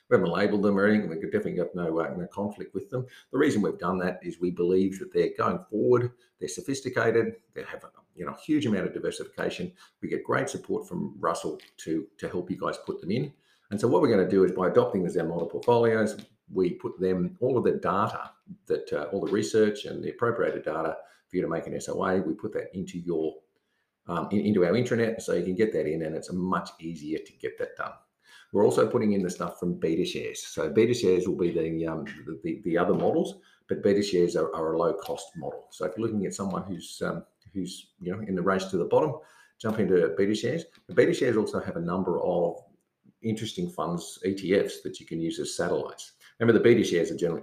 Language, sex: English, male